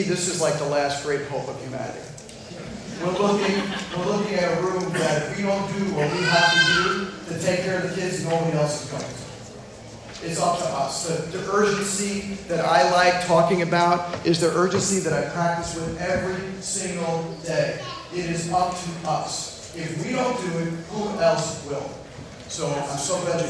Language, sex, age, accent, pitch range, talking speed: English, male, 40-59, American, 160-195 Hz, 195 wpm